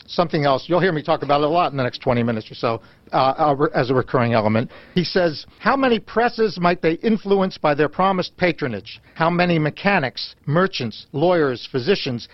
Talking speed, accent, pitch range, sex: 190 wpm, American, 130-180 Hz, male